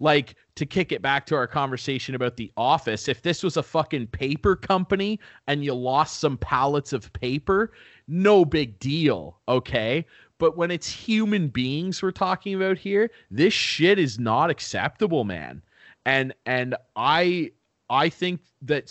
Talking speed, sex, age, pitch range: 160 wpm, male, 30-49, 125-155 Hz